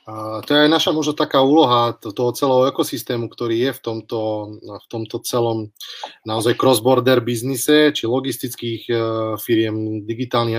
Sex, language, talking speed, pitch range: male, Slovak, 145 wpm, 125-145 Hz